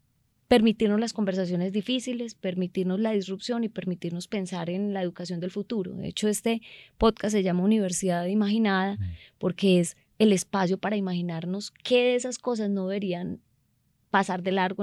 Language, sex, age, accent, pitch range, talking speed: Spanish, female, 20-39, Colombian, 175-205 Hz, 155 wpm